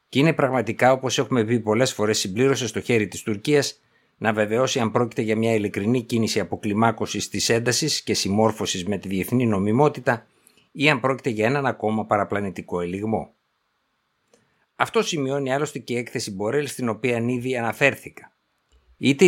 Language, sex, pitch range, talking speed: Greek, male, 105-135 Hz, 155 wpm